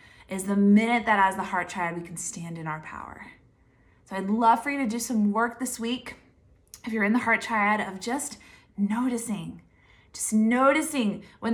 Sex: female